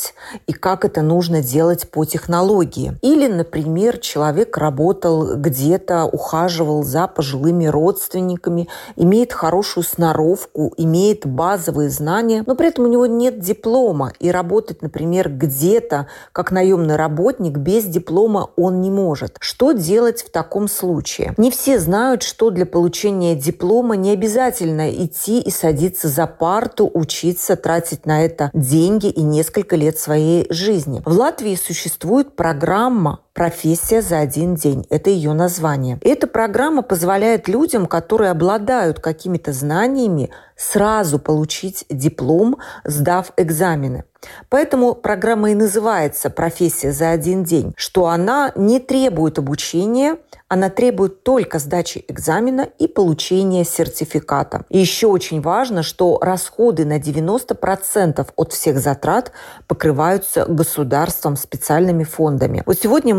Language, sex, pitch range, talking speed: Russian, female, 160-210 Hz, 125 wpm